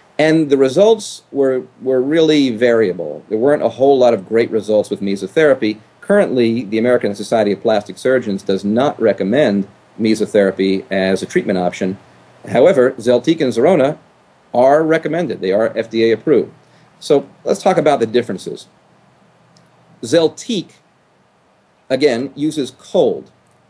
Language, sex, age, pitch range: English, male, 40-59, 110-155 Hz